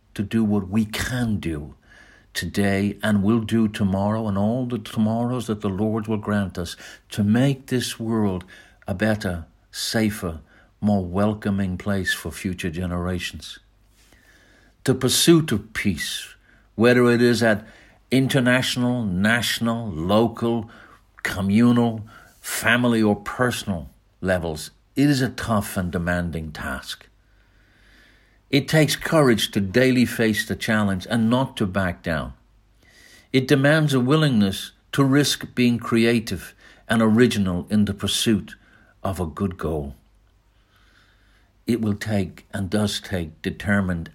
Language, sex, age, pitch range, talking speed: English, male, 60-79, 95-115 Hz, 130 wpm